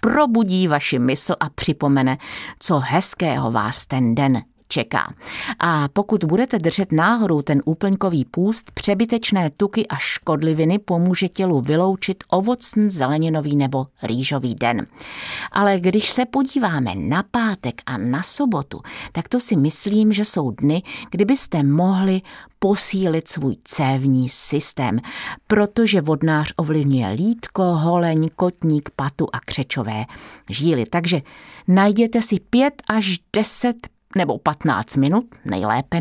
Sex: female